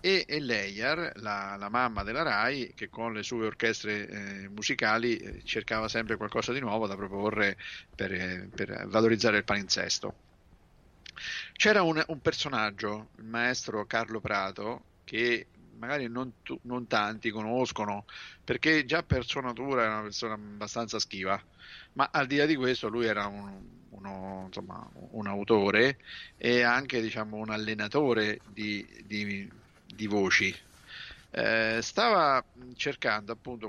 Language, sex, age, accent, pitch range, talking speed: Italian, male, 50-69, native, 100-115 Hz, 140 wpm